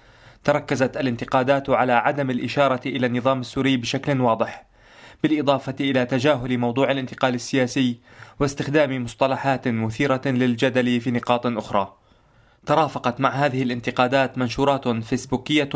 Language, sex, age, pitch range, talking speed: Arabic, male, 20-39, 120-140 Hz, 110 wpm